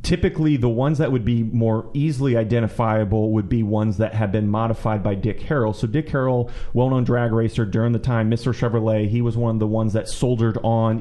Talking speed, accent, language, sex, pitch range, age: 215 wpm, American, English, male, 110-125 Hz, 30-49